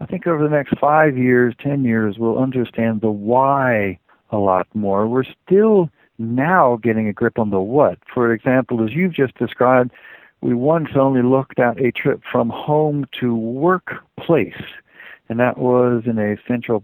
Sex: male